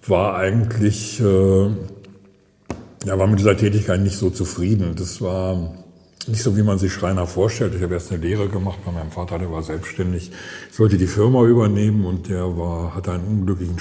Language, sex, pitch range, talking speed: German, male, 90-110 Hz, 185 wpm